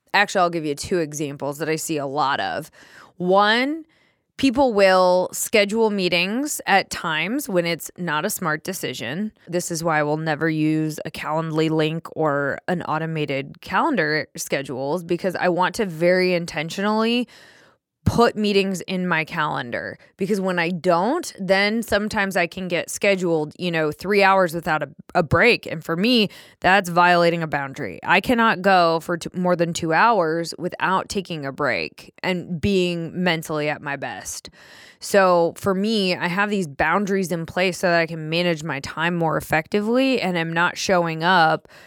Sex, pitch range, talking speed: female, 160-195 Hz, 170 wpm